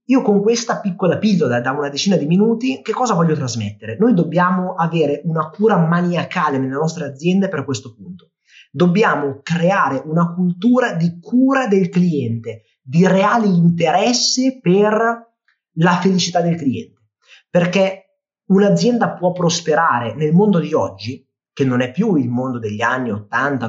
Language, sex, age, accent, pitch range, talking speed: Italian, male, 30-49, native, 150-205 Hz, 150 wpm